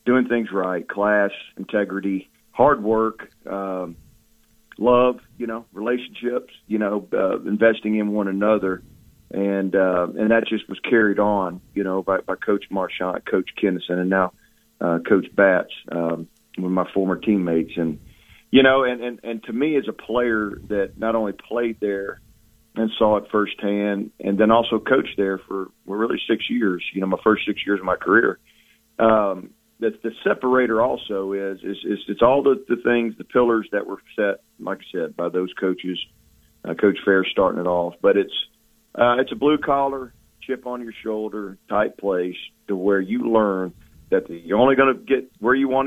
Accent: American